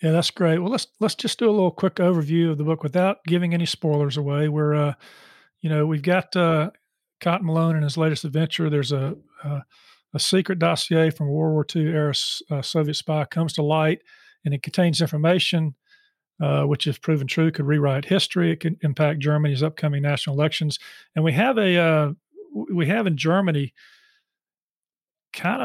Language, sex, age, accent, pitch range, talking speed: English, male, 40-59, American, 150-175 Hz, 190 wpm